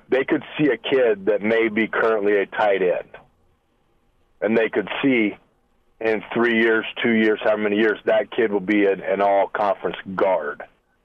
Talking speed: 170 wpm